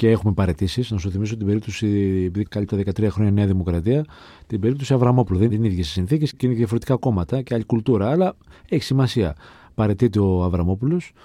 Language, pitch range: Greek, 100-125 Hz